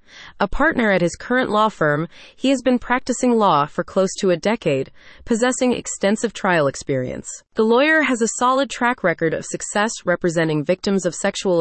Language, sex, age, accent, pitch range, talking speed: English, female, 30-49, American, 175-235 Hz, 175 wpm